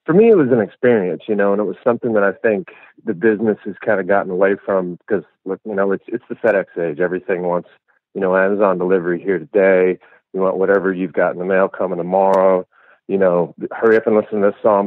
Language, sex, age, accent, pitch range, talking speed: English, male, 40-59, American, 95-115 Hz, 235 wpm